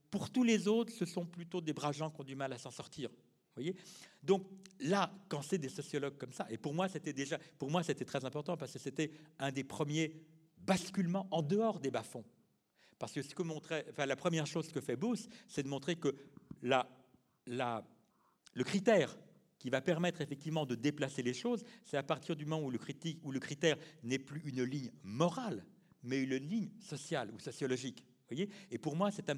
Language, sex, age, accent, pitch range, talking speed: French, male, 50-69, French, 135-180 Hz, 210 wpm